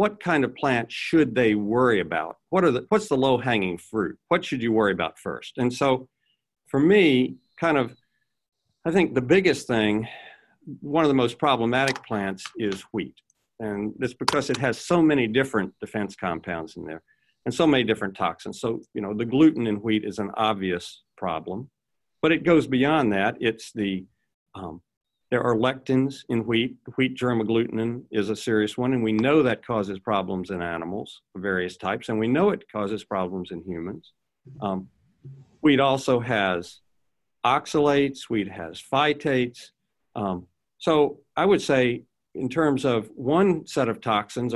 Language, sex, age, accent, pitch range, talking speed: English, male, 50-69, American, 100-135 Hz, 170 wpm